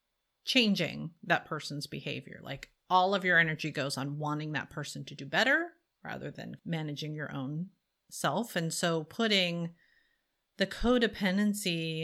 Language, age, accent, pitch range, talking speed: English, 30-49, American, 150-180 Hz, 140 wpm